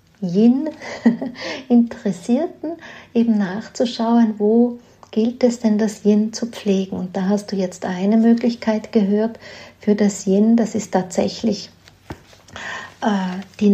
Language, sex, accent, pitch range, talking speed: German, female, Austrian, 200-240 Hz, 120 wpm